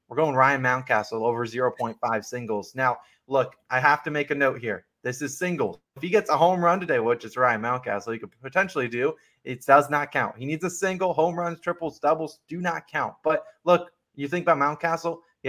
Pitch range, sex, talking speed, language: 125-165 Hz, male, 215 wpm, English